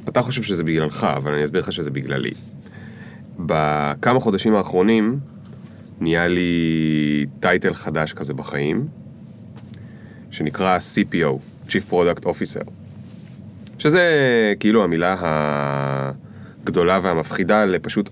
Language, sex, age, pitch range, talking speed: Hebrew, male, 30-49, 75-110 Hz, 100 wpm